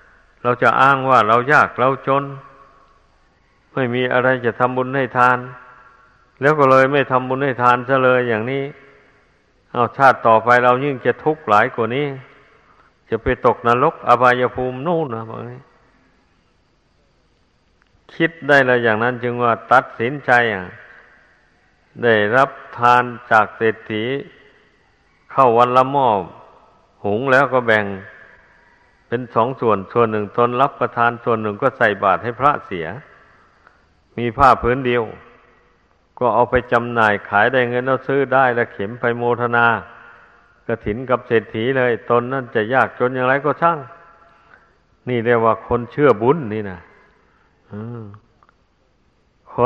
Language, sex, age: Thai, male, 60-79